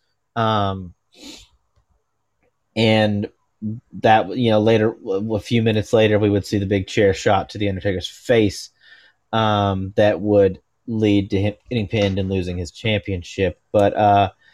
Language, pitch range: English, 110-130 Hz